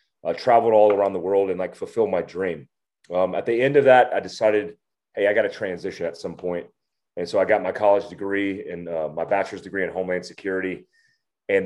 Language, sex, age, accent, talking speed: English, male, 30-49, American, 220 wpm